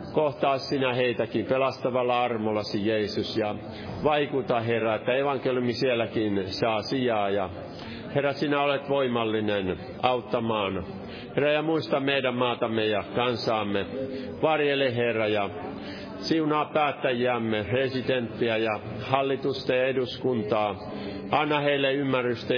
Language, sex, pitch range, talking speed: Finnish, male, 105-130 Hz, 100 wpm